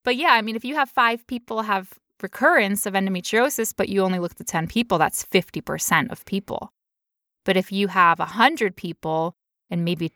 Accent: American